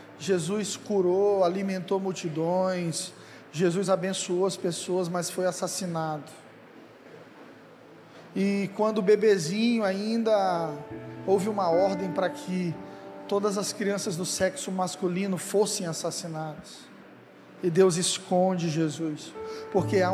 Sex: male